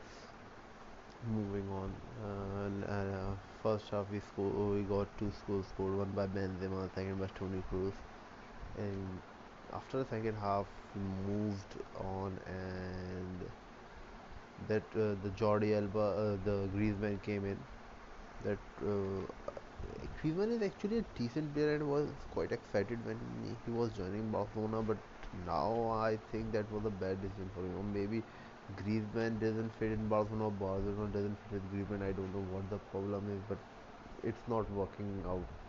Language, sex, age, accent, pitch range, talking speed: English, male, 20-39, Indian, 95-110 Hz, 155 wpm